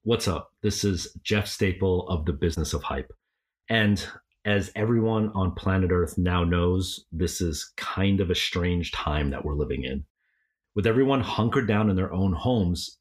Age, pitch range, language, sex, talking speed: 30-49, 90-110 Hz, English, male, 175 wpm